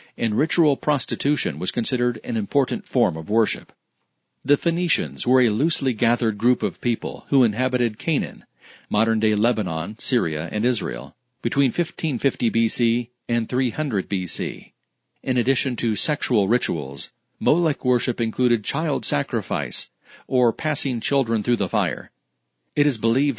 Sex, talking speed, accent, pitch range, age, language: male, 135 wpm, American, 110-135 Hz, 40-59, English